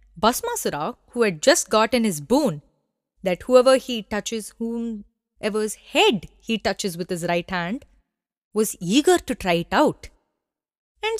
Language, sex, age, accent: English, female, 20-39, Indian